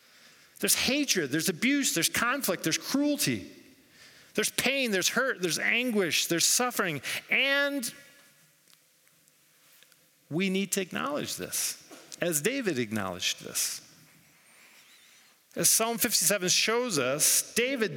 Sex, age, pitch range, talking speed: male, 40-59, 160-240 Hz, 105 wpm